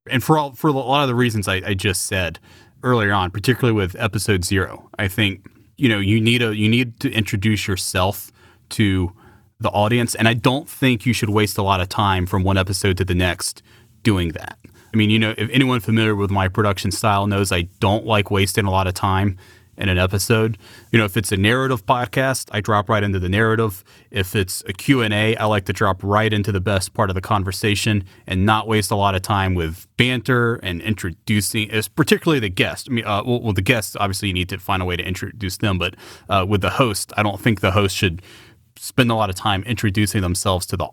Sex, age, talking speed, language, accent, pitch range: male, 30-49, 230 wpm, English, American, 95-115 Hz